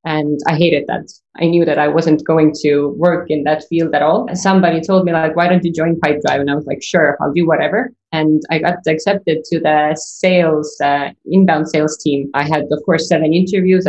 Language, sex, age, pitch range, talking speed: English, female, 20-39, 150-175 Hz, 230 wpm